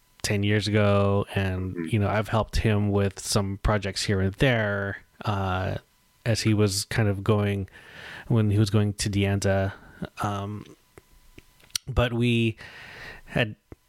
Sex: male